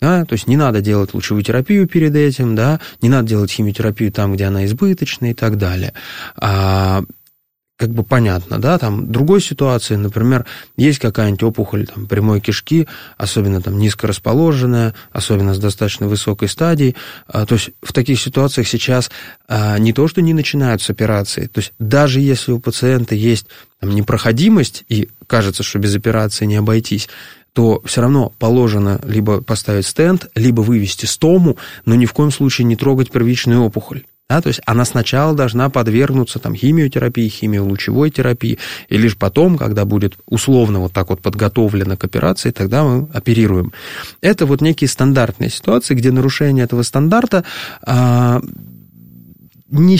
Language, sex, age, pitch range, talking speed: Russian, male, 20-39, 105-140 Hz, 150 wpm